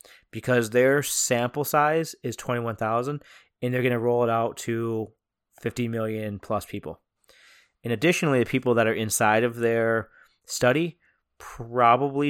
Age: 30-49